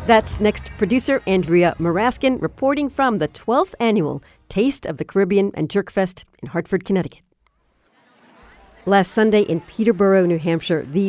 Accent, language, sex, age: American, English, female, 50-69